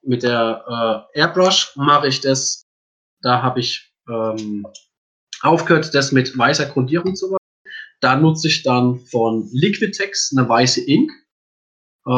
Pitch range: 125-160 Hz